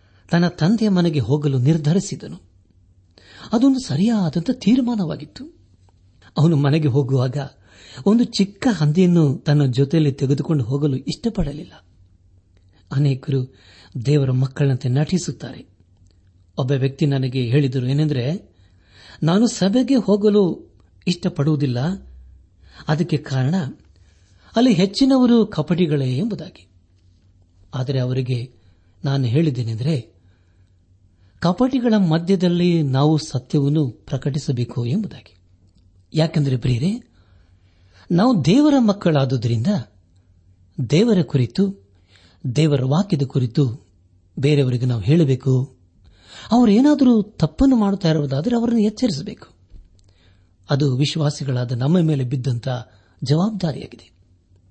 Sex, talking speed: male, 80 wpm